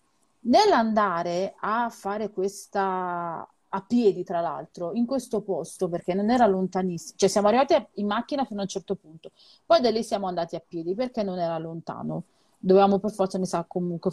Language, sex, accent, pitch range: Italian, female, native, 185-245 Hz